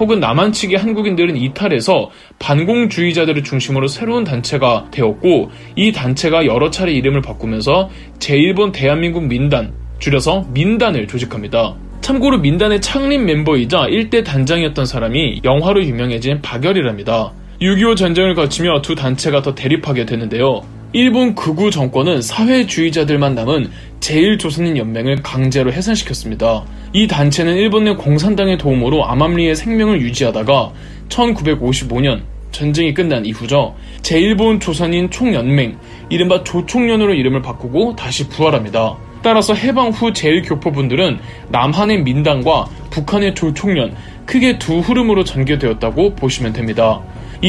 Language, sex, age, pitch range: Korean, male, 20-39, 125-195 Hz